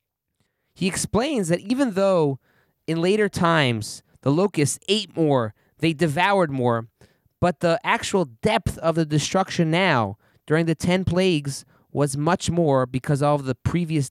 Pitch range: 130-175 Hz